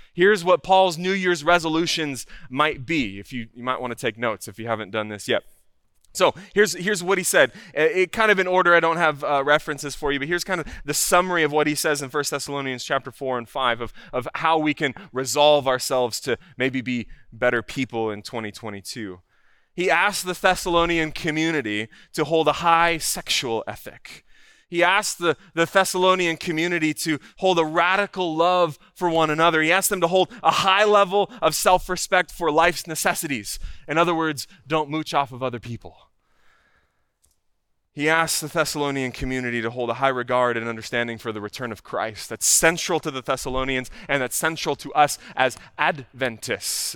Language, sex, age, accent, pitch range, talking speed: English, male, 20-39, American, 120-170 Hz, 190 wpm